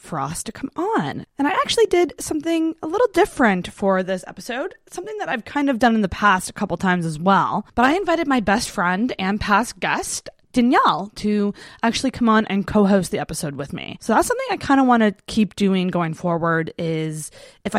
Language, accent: English, American